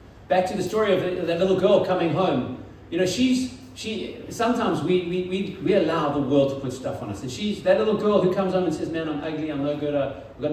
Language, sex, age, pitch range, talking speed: English, male, 40-59, 110-185 Hz, 255 wpm